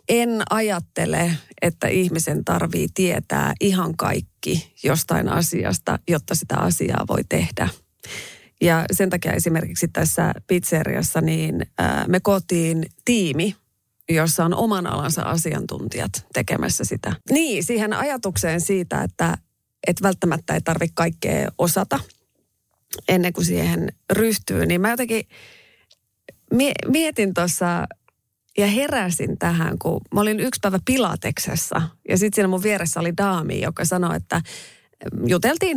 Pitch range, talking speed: 165-205 Hz, 120 wpm